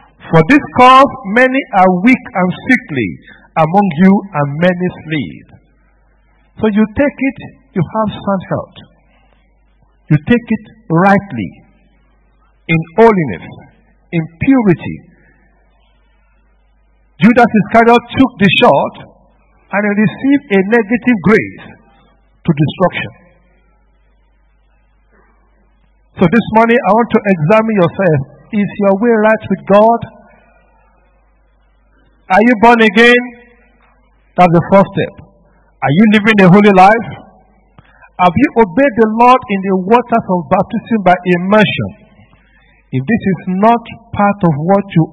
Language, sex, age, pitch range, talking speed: English, male, 50-69, 175-230 Hz, 120 wpm